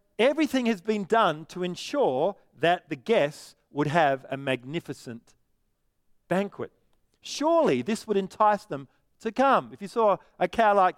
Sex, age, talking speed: male, 50-69, 150 wpm